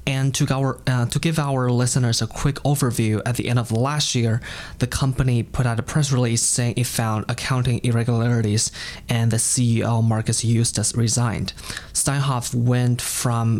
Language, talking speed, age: English, 170 wpm, 20-39